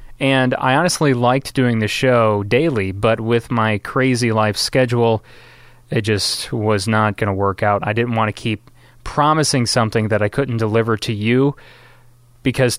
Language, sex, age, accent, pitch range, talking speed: English, male, 30-49, American, 110-140 Hz, 170 wpm